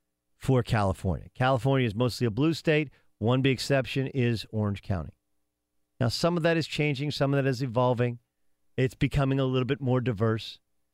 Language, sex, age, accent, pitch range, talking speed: English, male, 50-69, American, 90-135 Hz, 175 wpm